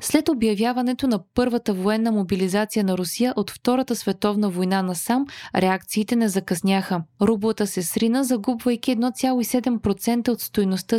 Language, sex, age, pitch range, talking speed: Bulgarian, female, 20-39, 195-250 Hz, 130 wpm